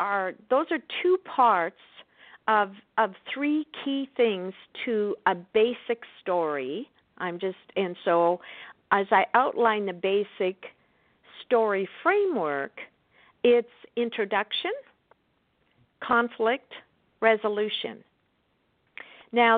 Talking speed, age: 90 wpm, 50-69